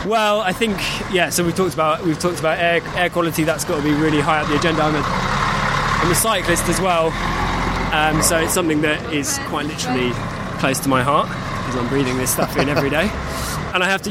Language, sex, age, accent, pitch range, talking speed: English, male, 20-39, British, 125-160 Hz, 230 wpm